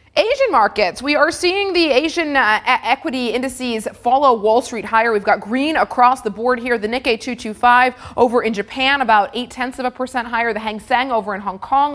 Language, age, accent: English, 30-49, American